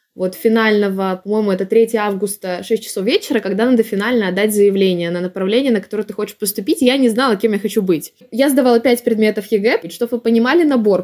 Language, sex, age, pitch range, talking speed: Russian, female, 20-39, 200-245 Hz, 200 wpm